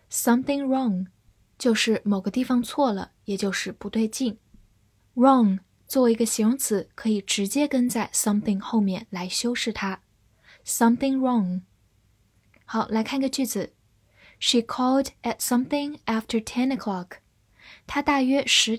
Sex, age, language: female, 10-29, Chinese